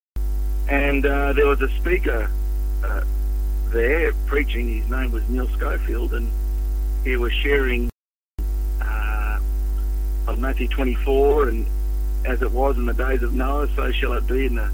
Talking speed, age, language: 150 wpm, 50-69, English